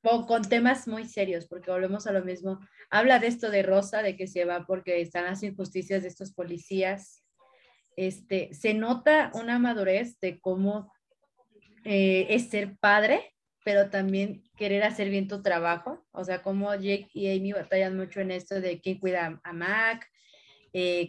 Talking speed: 170 wpm